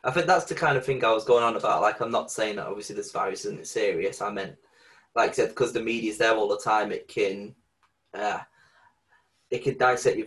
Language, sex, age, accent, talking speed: English, male, 20-39, British, 240 wpm